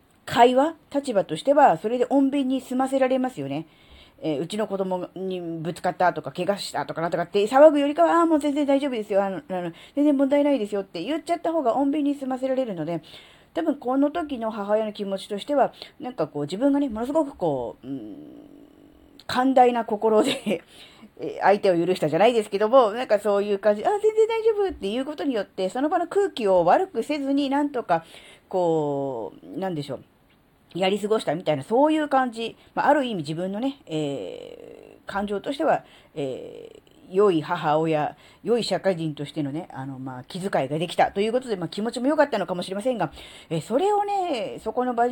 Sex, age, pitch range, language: female, 40-59, 180-280 Hz, Japanese